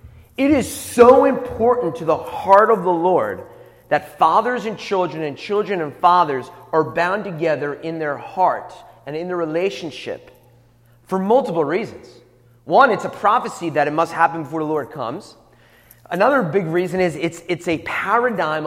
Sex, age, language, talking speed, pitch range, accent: male, 30-49, English, 165 wpm, 145-190 Hz, American